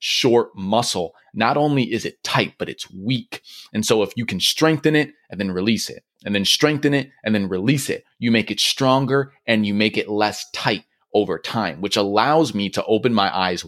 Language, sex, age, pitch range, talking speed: English, male, 30-49, 100-125 Hz, 210 wpm